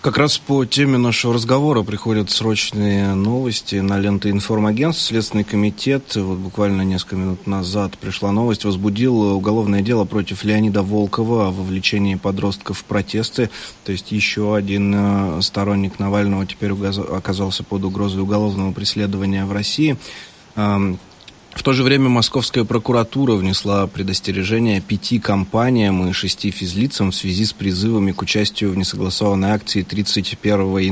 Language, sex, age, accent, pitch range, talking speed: Russian, male, 20-39, native, 100-115 Hz, 135 wpm